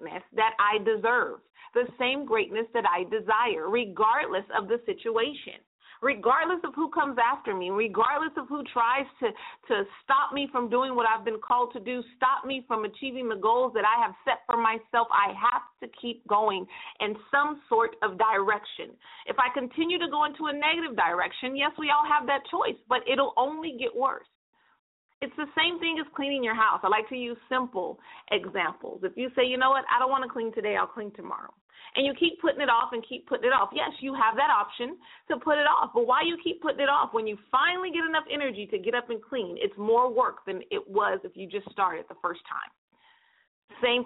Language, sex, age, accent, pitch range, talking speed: English, female, 40-59, American, 230-310 Hz, 215 wpm